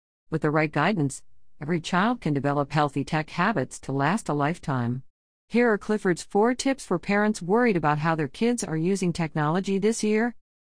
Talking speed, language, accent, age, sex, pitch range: 180 wpm, English, American, 50-69, female, 145-200 Hz